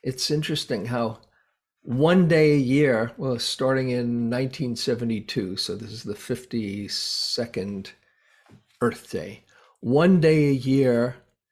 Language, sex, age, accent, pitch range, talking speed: English, male, 50-69, American, 120-145 Hz, 115 wpm